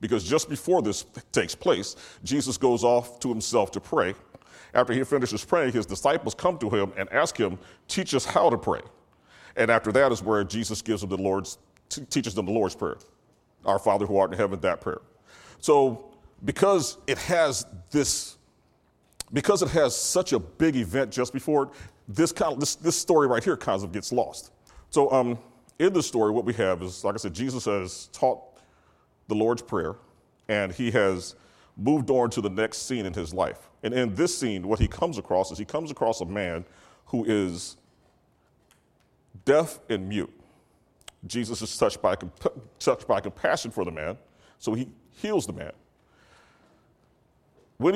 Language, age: English, 40-59